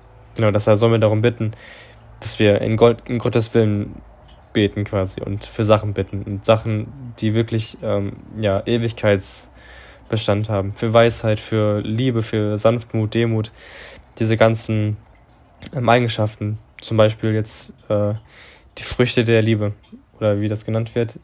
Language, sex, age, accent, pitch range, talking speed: German, male, 10-29, German, 105-115 Hz, 140 wpm